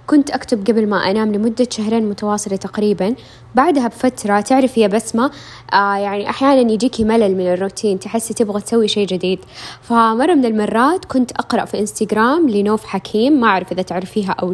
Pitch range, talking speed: 200-240 Hz, 165 wpm